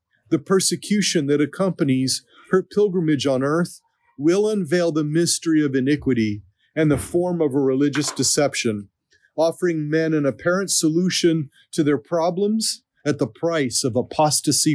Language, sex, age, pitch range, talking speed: English, male, 40-59, 130-175 Hz, 140 wpm